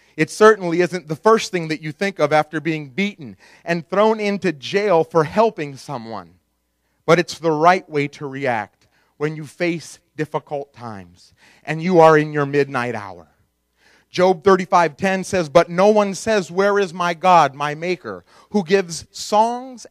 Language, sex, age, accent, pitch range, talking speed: English, male, 40-59, American, 145-200 Hz, 165 wpm